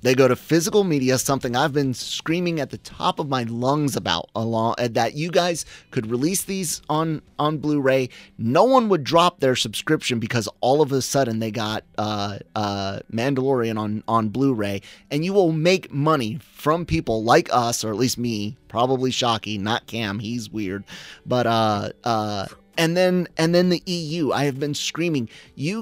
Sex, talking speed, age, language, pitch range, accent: male, 180 wpm, 30-49, English, 110-150 Hz, American